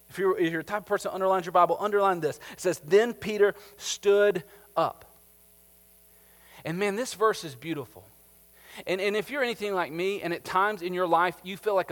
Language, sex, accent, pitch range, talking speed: English, male, American, 165-210 Hz, 205 wpm